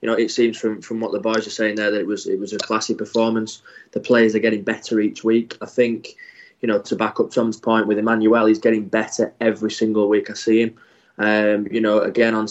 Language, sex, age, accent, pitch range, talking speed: English, male, 20-39, British, 110-125 Hz, 250 wpm